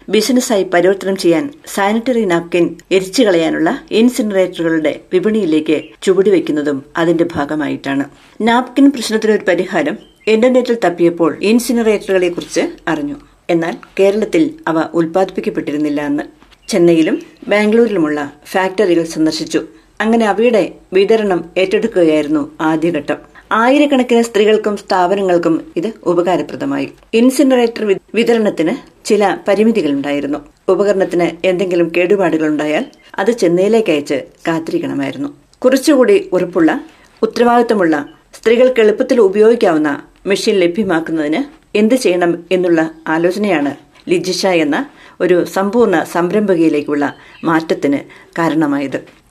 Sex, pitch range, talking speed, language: female, 165-230 Hz, 85 wpm, Malayalam